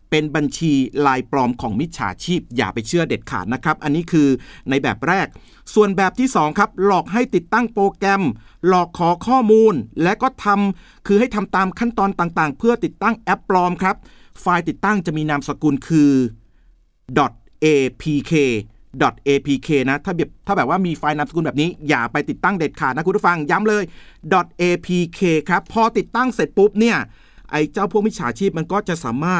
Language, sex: Thai, male